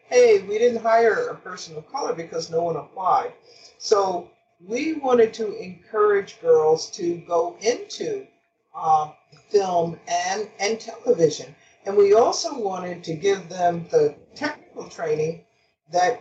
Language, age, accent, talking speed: English, 50-69, American, 135 wpm